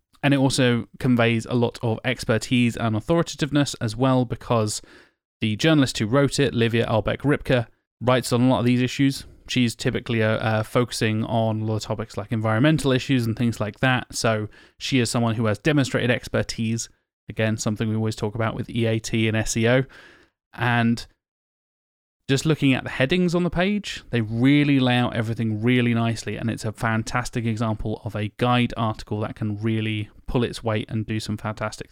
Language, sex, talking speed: English, male, 180 wpm